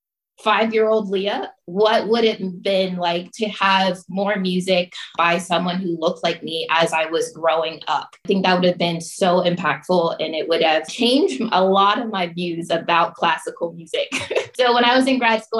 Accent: American